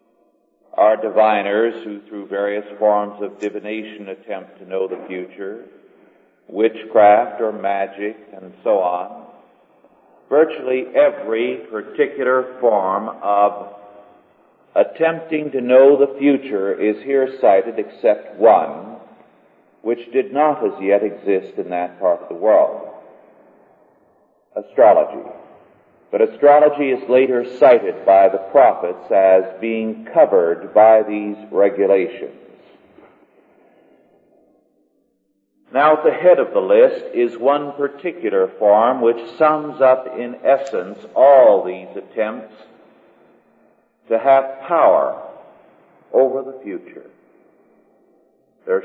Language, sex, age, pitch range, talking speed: English, male, 50-69, 100-140 Hz, 105 wpm